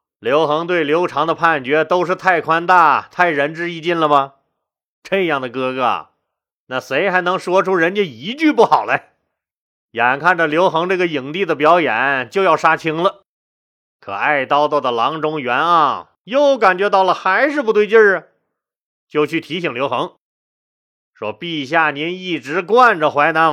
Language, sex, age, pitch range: Chinese, male, 30-49, 160-250 Hz